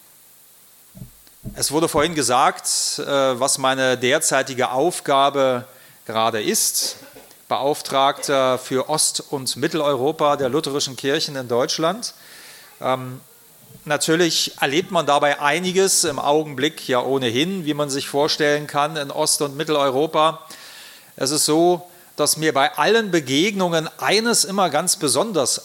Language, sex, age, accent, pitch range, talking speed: German, male, 40-59, German, 130-155 Hz, 115 wpm